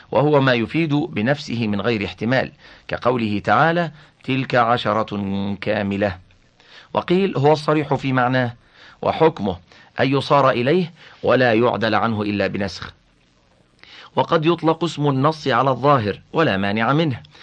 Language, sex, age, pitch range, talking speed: Arabic, male, 50-69, 100-140 Hz, 120 wpm